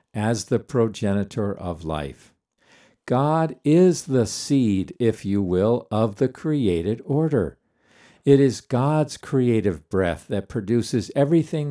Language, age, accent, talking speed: English, 50-69, American, 125 wpm